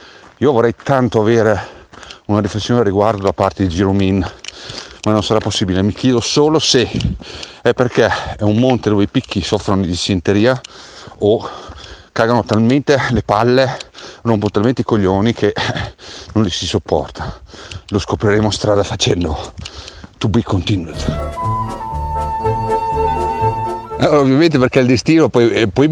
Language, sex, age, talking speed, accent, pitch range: Italian, male, 50-69, 145 wpm, native, 95-120 Hz